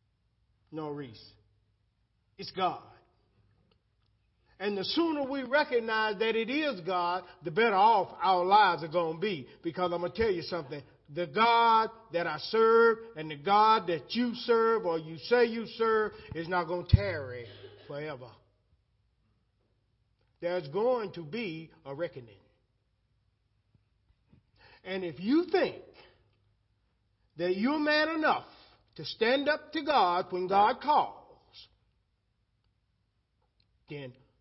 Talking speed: 130 wpm